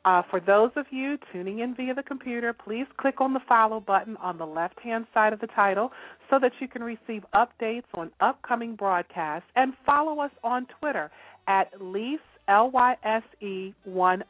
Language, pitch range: English, 175-235 Hz